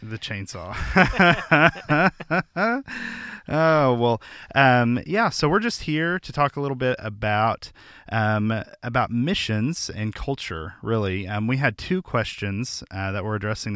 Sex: male